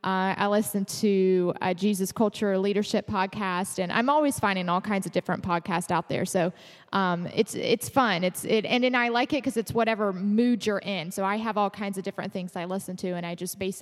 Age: 20-39